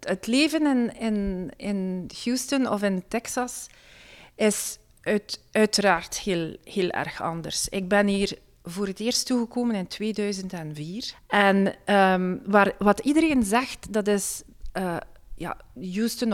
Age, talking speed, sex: 40-59, 130 wpm, female